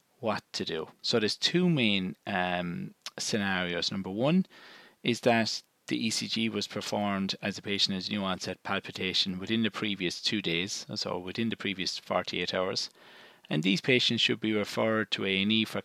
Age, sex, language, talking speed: 30-49, male, English, 165 wpm